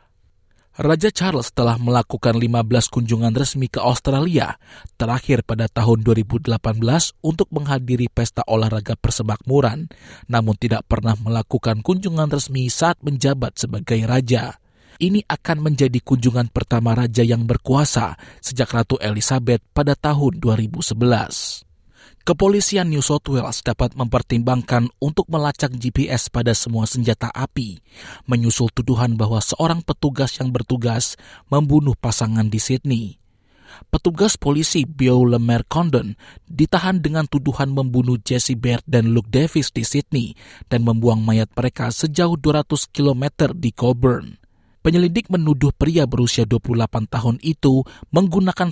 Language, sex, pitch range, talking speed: Indonesian, male, 115-145 Hz, 120 wpm